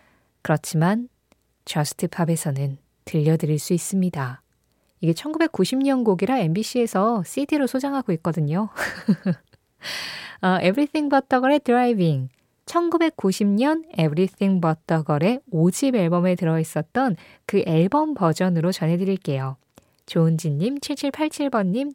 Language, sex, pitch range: Korean, female, 160-250 Hz